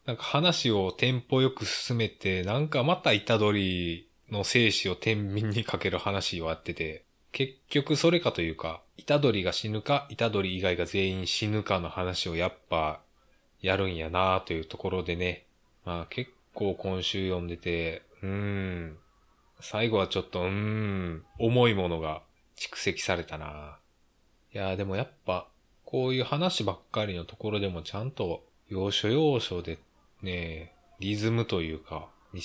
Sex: male